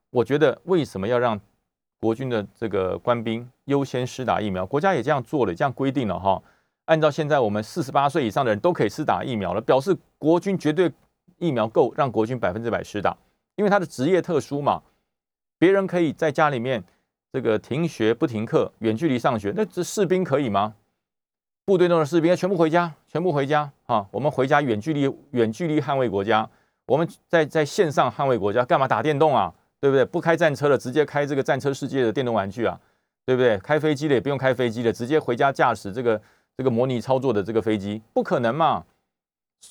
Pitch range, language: 115-165 Hz, Chinese